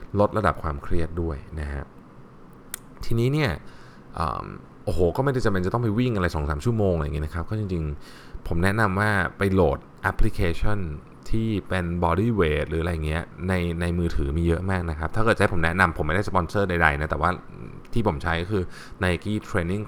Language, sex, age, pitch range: Thai, male, 20-39, 80-100 Hz